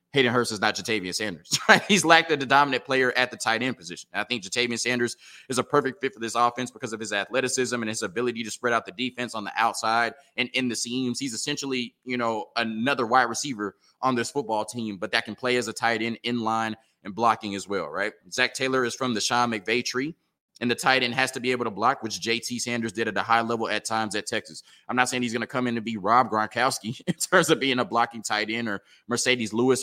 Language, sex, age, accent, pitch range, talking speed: English, male, 20-39, American, 110-130 Hz, 255 wpm